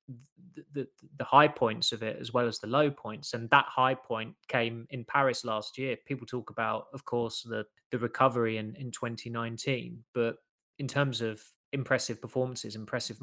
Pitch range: 115-130 Hz